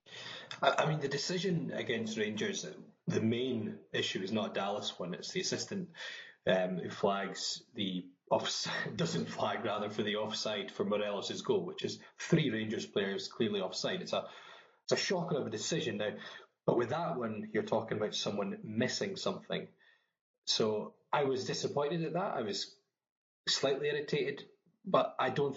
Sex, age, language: male, 20-39, English